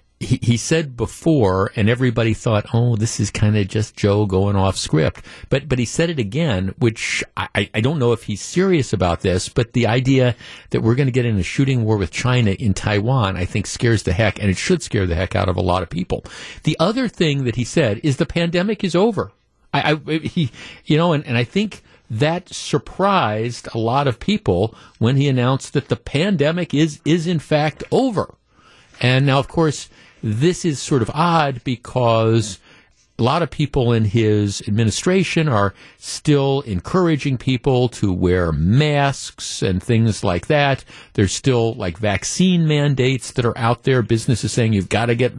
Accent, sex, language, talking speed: American, male, English, 195 wpm